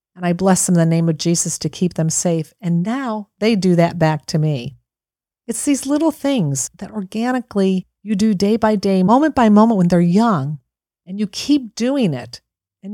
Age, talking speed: 50-69, 205 wpm